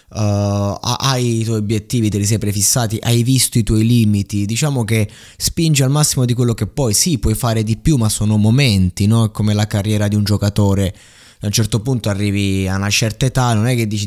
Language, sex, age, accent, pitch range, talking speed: Italian, male, 20-39, native, 95-110 Hz, 220 wpm